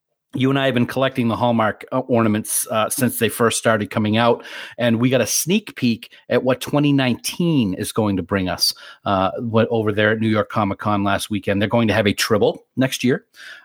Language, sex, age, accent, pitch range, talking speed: English, male, 40-59, American, 110-140 Hz, 215 wpm